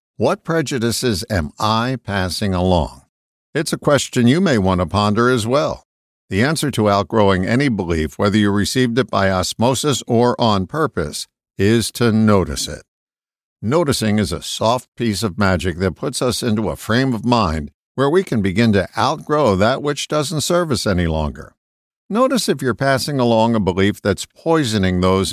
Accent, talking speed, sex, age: American, 170 wpm, male, 50-69